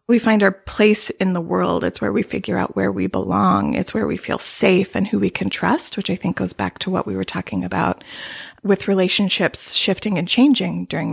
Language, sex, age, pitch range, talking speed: English, female, 30-49, 190-225 Hz, 225 wpm